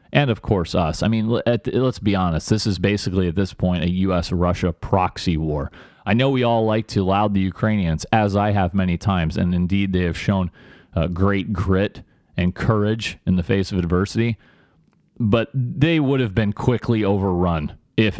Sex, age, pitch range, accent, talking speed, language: male, 30-49, 90-115 Hz, American, 180 wpm, English